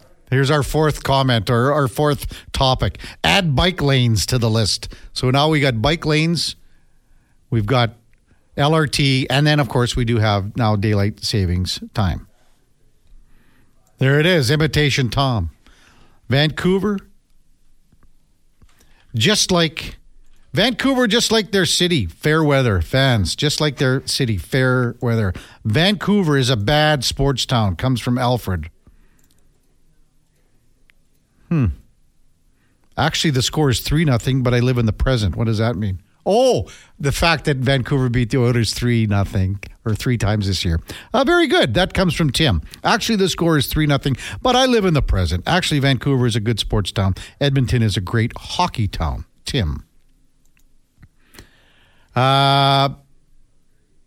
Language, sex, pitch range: English, male, 110-150 Hz